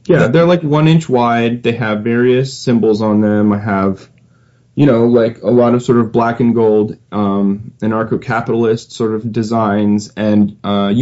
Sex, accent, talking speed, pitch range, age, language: male, American, 175 wpm, 110-135 Hz, 30-49, English